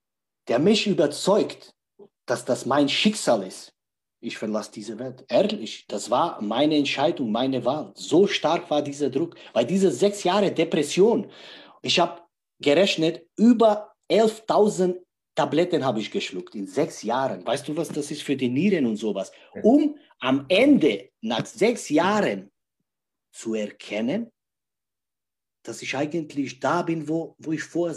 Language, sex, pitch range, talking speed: German, male, 125-170 Hz, 145 wpm